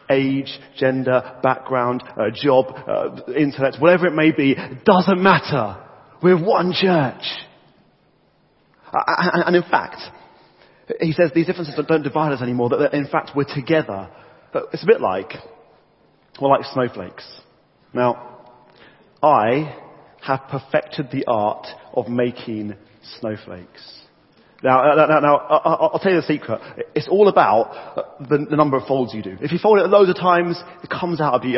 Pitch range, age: 125-180 Hz, 40-59